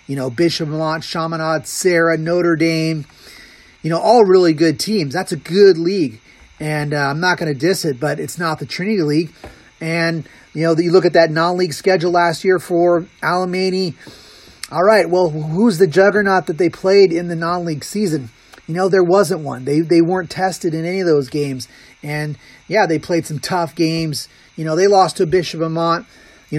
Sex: male